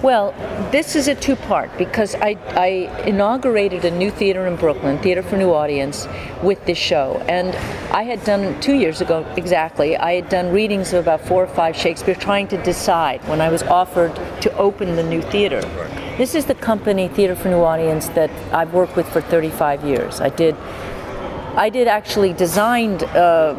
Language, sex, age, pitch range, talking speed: English, female, 50-69, 165-215 Hz, 185 wpm